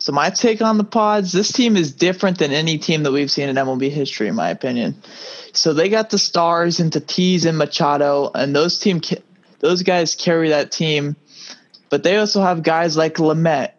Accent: American